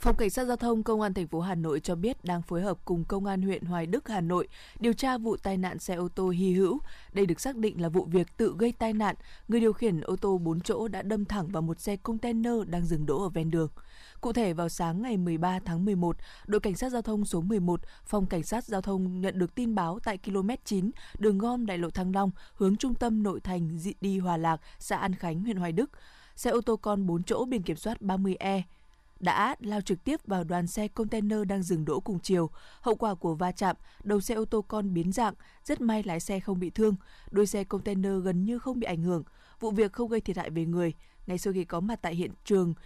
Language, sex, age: Vietnamese, female, 20-39